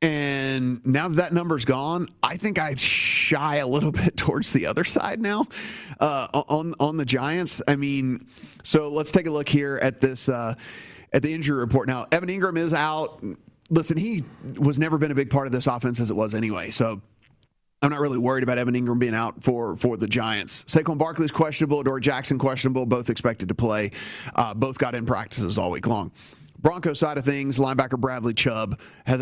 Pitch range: 125-155 Hz